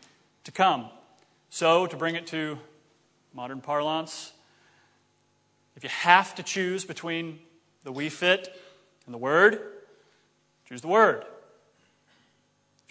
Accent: American